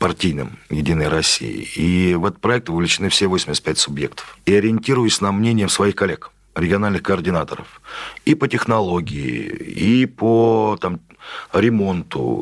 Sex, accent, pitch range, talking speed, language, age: male, native, 95-115 Hz, 120 wpm, Russian, 40-59